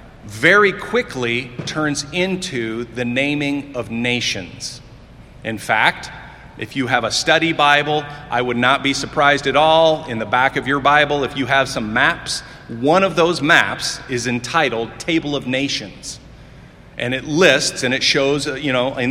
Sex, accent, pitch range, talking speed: male, American, 125-155 Hz, 165 wpm